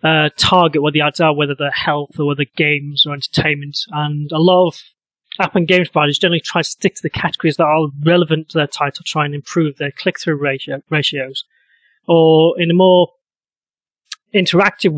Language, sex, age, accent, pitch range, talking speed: English, male, 30-49, British, 150-180 Hz, 190 wpm